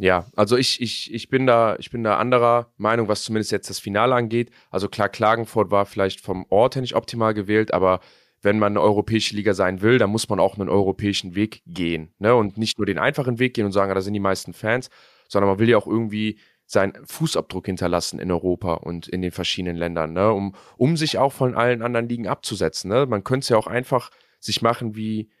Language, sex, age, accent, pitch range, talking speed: German, male, 30-49, German, 100-130 Hz, 225 wpm